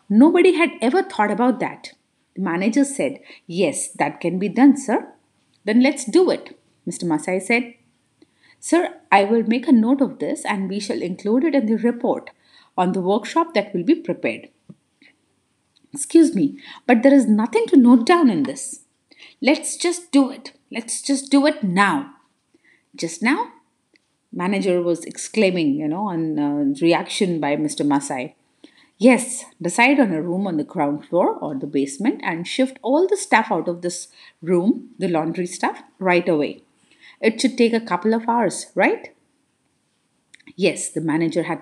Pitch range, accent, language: 180-275 Hz, Indian, English